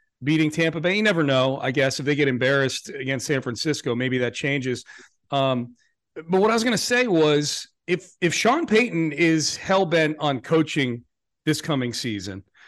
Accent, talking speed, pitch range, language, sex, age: American, 185 wpm, 135-180 Hz, English, male, 40-59